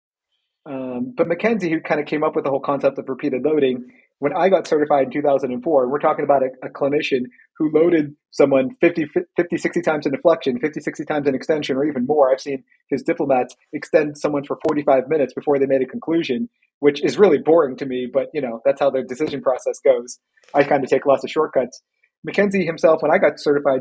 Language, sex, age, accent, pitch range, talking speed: English, male, 30-49, American, 135-165 Hz, 215 wpm